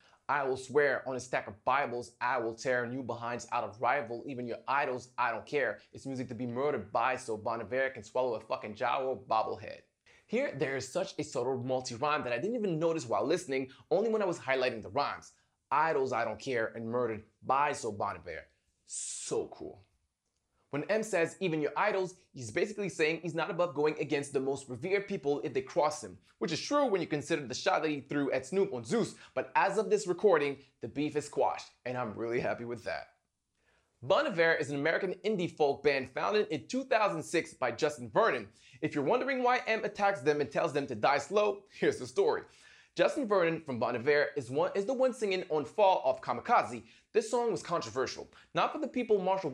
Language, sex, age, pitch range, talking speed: English, male, 20-39, 130-195 Hz, 210 wpm